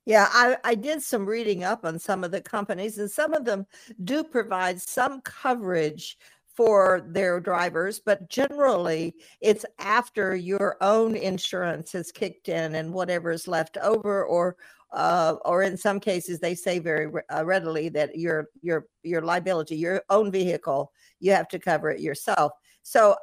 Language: English